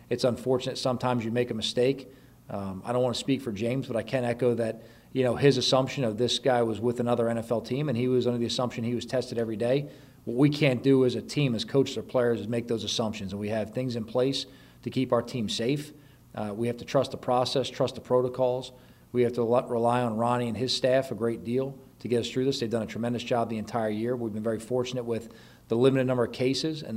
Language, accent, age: English, American, 40-59